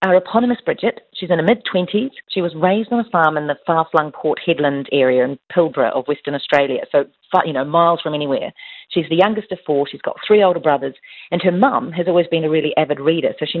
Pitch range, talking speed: 145-190 Hz, 235 wpm